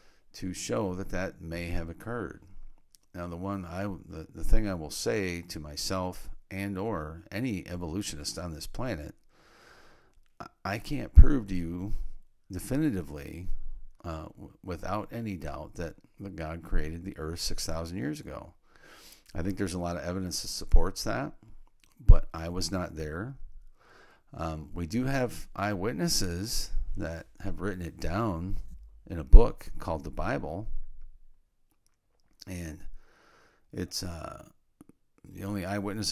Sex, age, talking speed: male, 50-69, 135 wpm